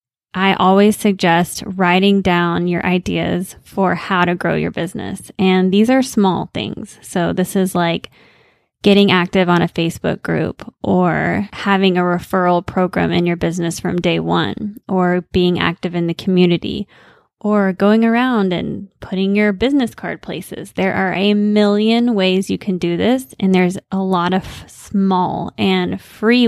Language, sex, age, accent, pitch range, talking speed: English, female, 20-39, American, 180-200 Hz, 160 wpm